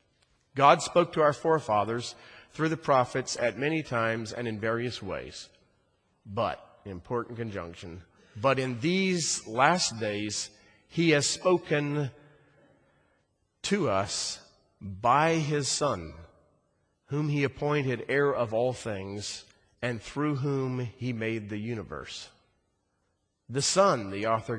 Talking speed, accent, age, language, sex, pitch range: 120 wpm, American, 40-59, English, male, 100-140 Hz